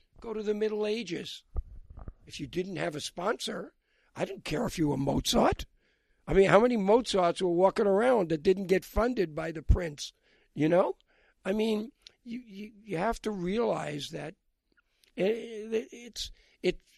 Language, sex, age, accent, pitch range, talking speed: English, male, 60-79, American, 155-195 Hz, 170 wpm